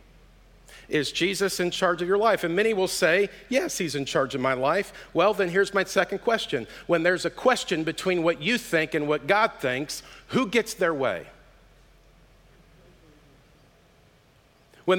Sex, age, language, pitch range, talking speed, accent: male, 50-69, English, 145-195 Hz, 165 wpm, American